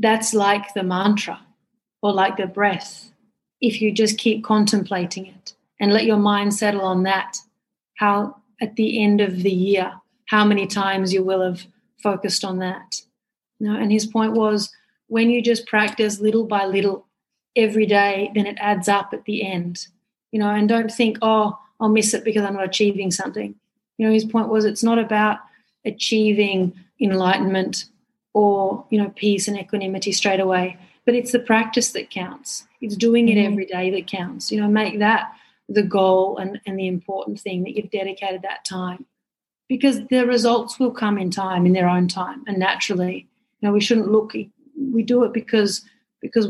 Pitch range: 195-225 Hz